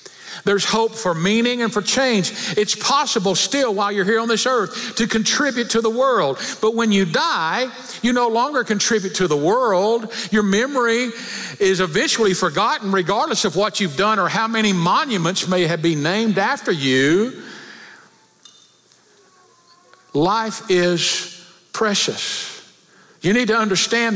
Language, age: English, 50-69